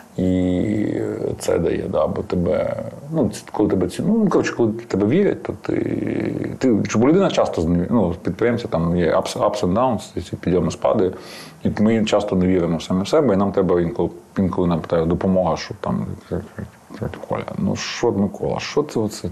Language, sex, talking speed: Ukrainian, male, 175 wpm